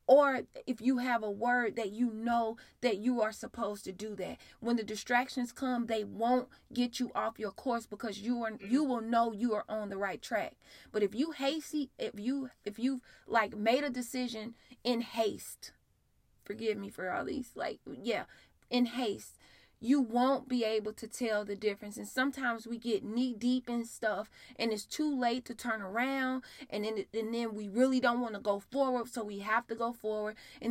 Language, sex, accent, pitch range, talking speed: English, female, American, 210-245 Hz, 200 wpm